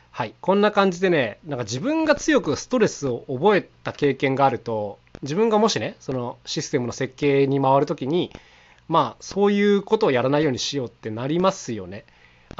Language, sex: Japanese, male